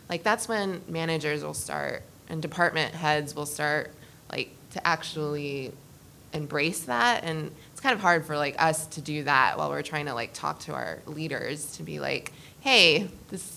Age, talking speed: 20-39, 180 wpm